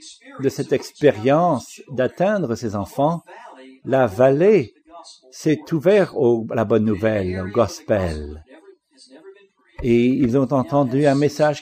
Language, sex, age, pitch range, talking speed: English, male, 50-69, 120-155 Hz, 115 wpm